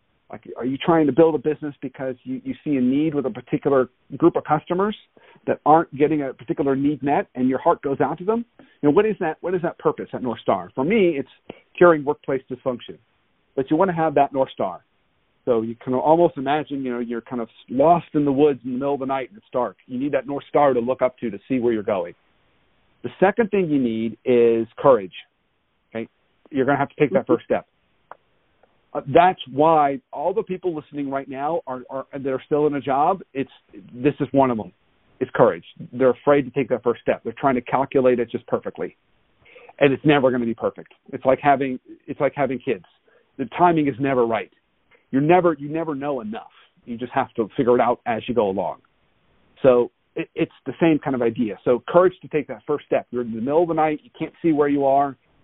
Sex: male